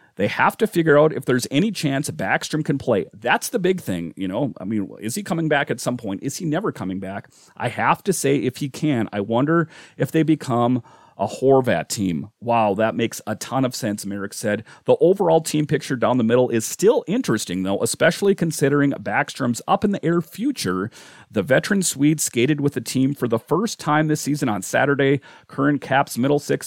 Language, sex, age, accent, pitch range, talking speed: English, male, 40-59, American, 115-150 Hz, 205 wpm